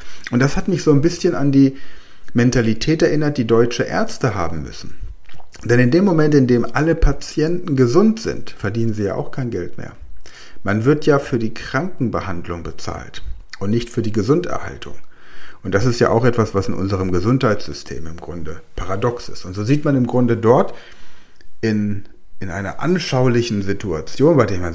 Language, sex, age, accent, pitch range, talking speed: German, male, 40-59, German, 95-135 Hz, 180 wpm